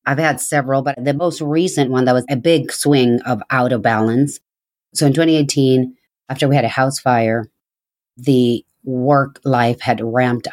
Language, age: English, 40-59